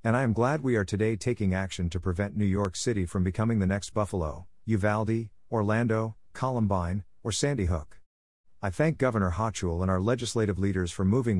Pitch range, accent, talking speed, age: 90-115 Hz, American, 185 wpm, 50-69